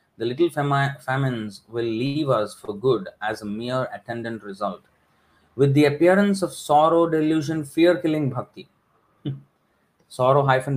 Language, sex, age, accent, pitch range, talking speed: English, male, 20-39, Indian, 110-145 Hz, 135 wpm